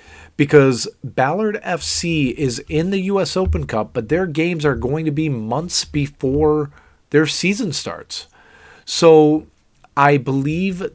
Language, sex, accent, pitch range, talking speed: English, male, American, 110-145 Hz, 130 wpm